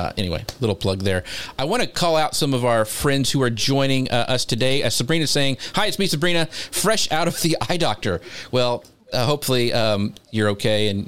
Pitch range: 105-130 Hz